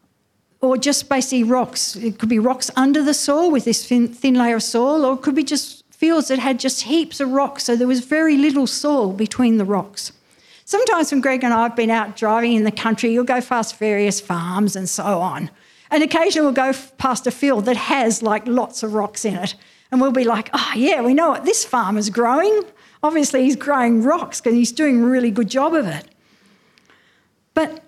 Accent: Australian